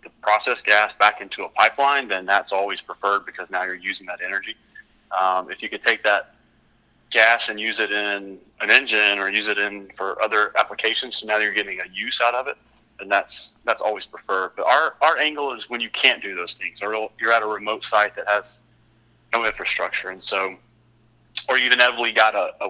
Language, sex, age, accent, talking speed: English, male, 30-49, American, 210 wpm